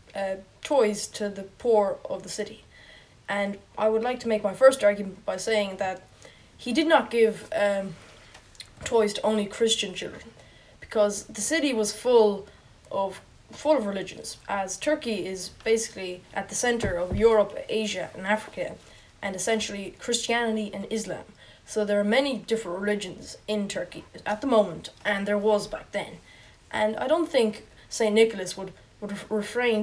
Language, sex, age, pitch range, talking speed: English, female, 10-29, 195-225 Hz, 165 wpm